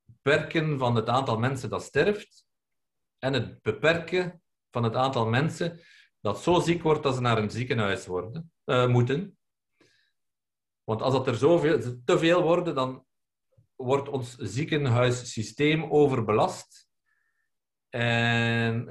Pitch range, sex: 115-150 Hz, male